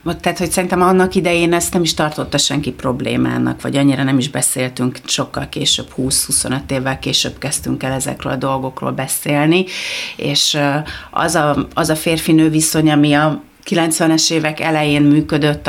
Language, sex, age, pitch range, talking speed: Hungarian, female, 40-59, 145-175 Hz, 150 wpm